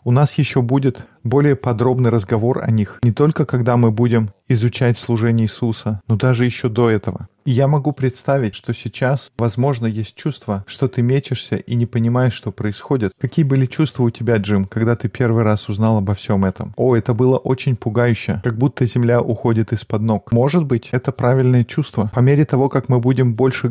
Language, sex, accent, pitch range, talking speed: Russian, male, native, 110-130 Hz, 190 wpm